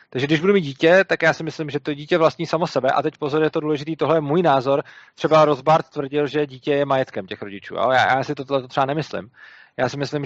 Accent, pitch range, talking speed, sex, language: native, 125-155 Hz, 250 wpm, male, Czech